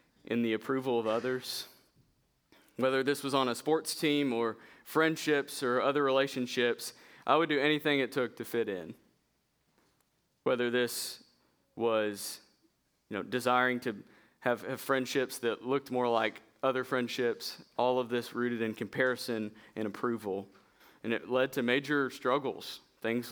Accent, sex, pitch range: American, male, 110-135 Hz